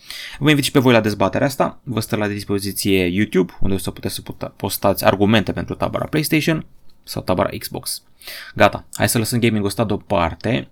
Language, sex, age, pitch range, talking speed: Romanian, male, 20-39, 100-135 Hz, 185 wpm